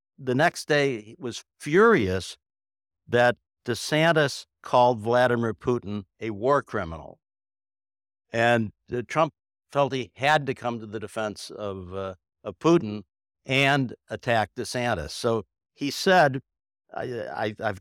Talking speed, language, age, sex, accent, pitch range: 130 wpm, English, 60-79, male, American, 100-140 Hz